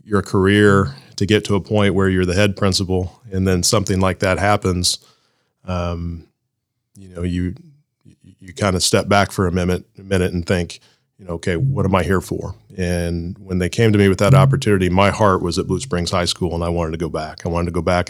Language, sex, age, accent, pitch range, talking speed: English, male, 30-49, American, 90-100 Hz, 230 wpm